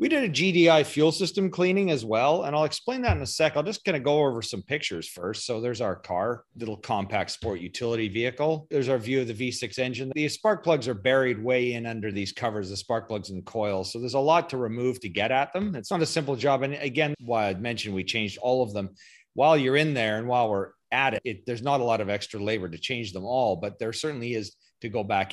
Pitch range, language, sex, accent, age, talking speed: 90-130 Hz, English, male, American, 40-59, 260 wpm